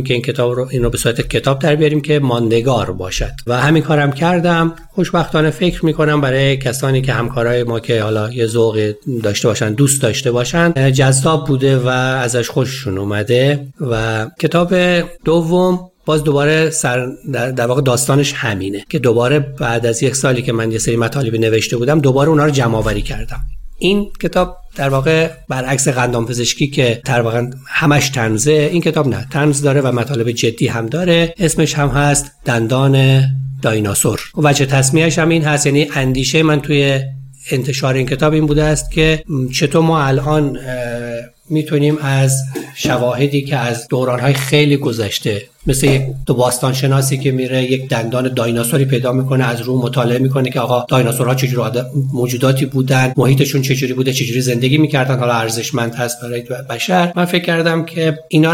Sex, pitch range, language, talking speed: male, 125-150 Hz, Persian, 165 wpm